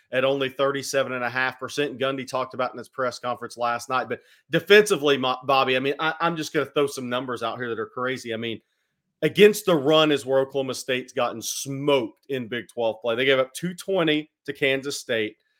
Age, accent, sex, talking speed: 40-59, American, male, 195 wpm